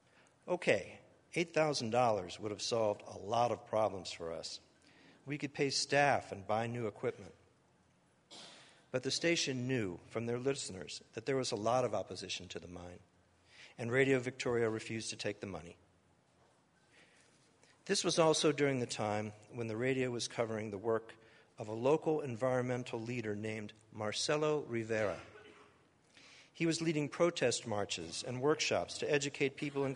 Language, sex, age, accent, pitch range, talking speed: English, male, 50-69, American, 105-140 Hz, 150 wpm